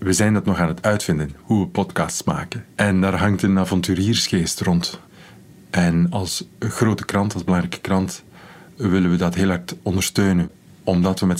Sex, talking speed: male, 175 wpm